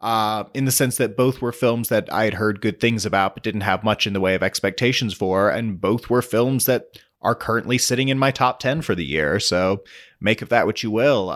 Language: English